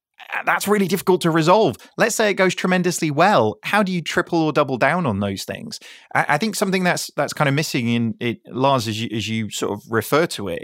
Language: English